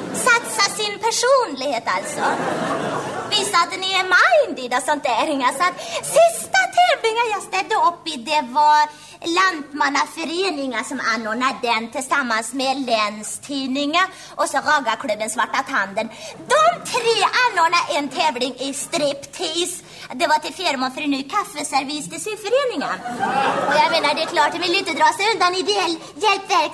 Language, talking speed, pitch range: Swedish, 145 wpm, 270-370 Hz